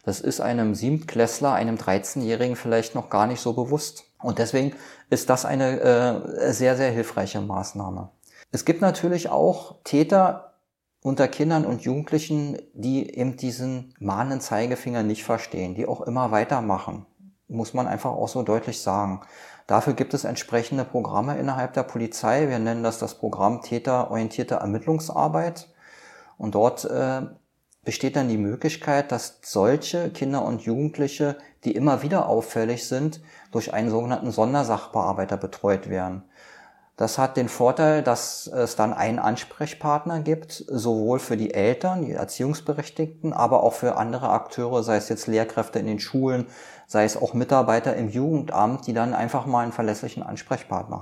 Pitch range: 110-140 Hz